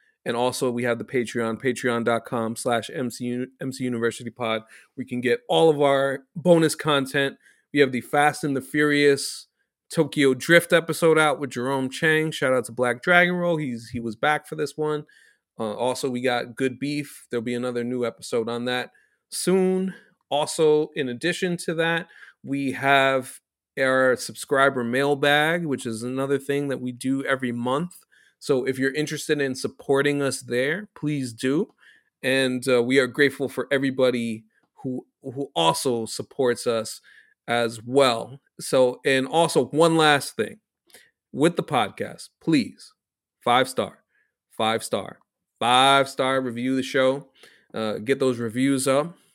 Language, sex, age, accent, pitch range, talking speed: English, male, 30-49, American, 125-150 Hz, 150 wpm